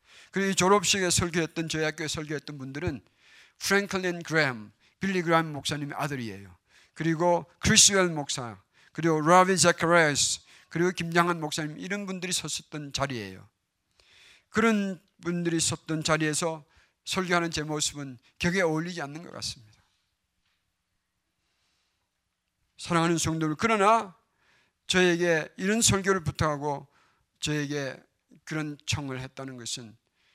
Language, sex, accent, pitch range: Korean, male, native, 135-180 Hz